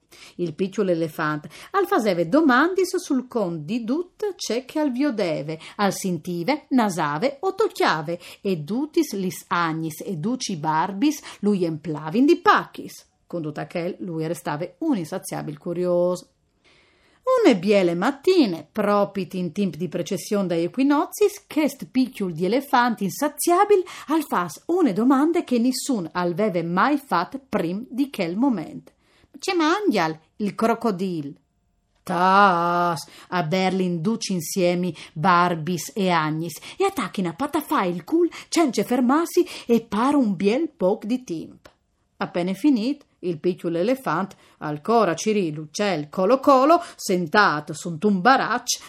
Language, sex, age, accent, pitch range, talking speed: Italian, female, 40-59, native, 175-285 Hz, 135 wpm